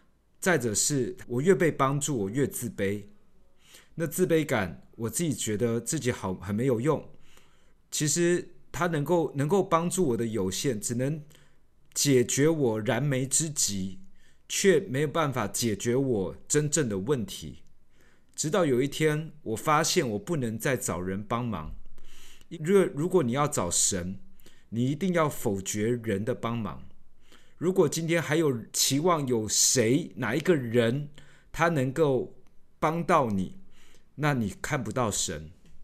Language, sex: Chinese, male